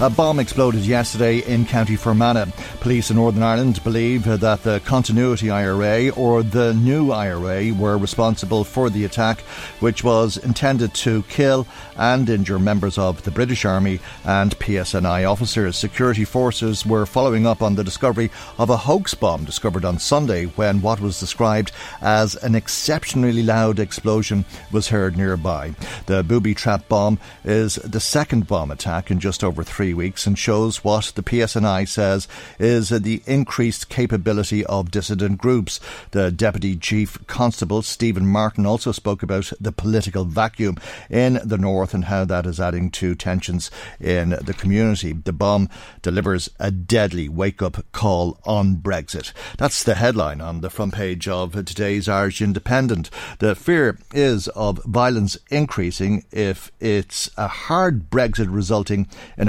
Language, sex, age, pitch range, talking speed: English, male, 50-69, 95-115 Hz, 155 wpm